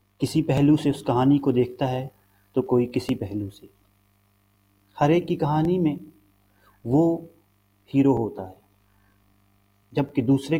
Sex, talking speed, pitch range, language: male, 130 wpm, 100-140 Hz, English